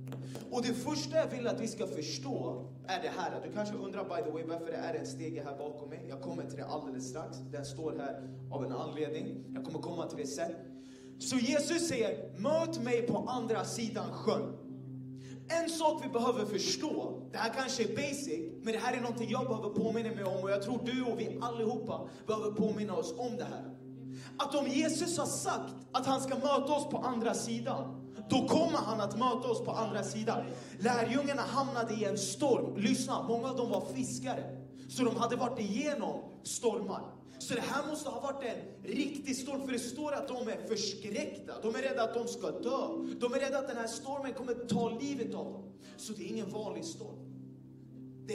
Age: 30-49